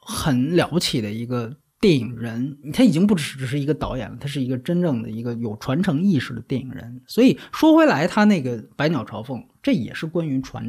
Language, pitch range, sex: Chinese, 125-175 Hz, male